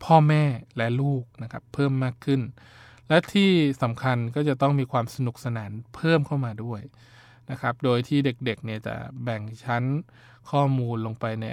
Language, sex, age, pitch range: Thai, male, 20-39, 115-130 Hz